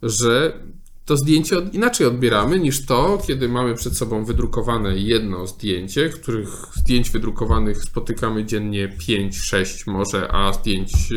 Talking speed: 130 wpm